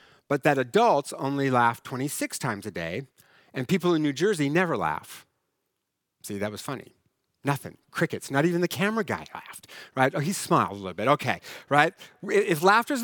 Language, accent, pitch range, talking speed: English, American, 130-175 Hz, 180 wpm